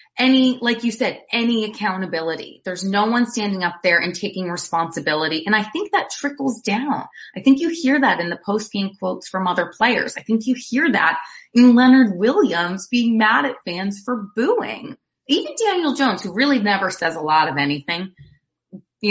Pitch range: 185-275 Hz